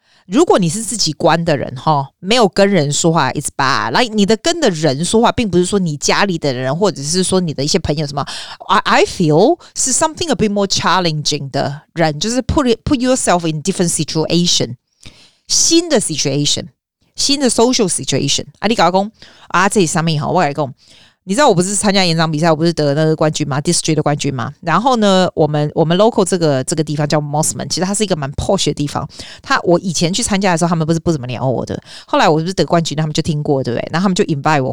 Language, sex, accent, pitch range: Chinese, female, native, 150-200 Hz